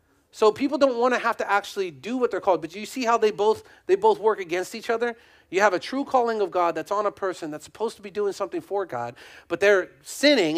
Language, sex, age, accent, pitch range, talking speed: English, male, 40-59, American, 175-285 Hz, 265 wpm